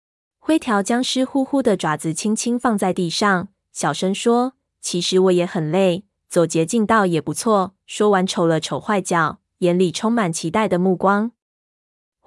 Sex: female